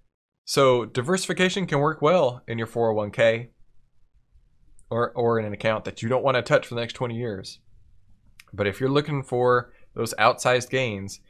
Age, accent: 20-39, American